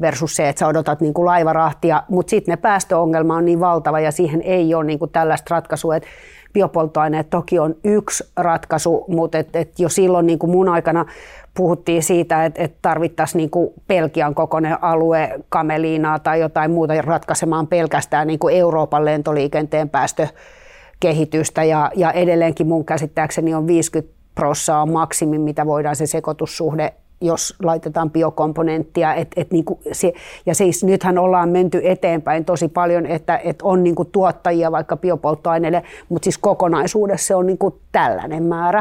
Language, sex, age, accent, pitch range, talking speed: Finnish, female, 30-49, native, 160-185 Hz, 145 wpm